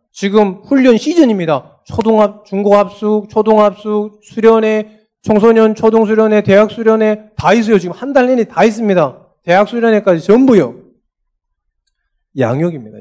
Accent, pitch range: native, 150-240 Hz